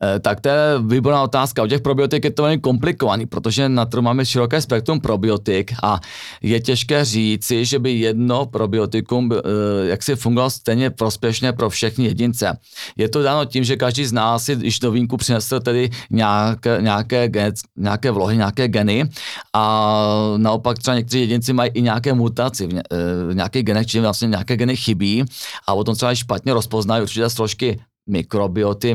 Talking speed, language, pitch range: 165 wpm, Czech, 105-125 Hz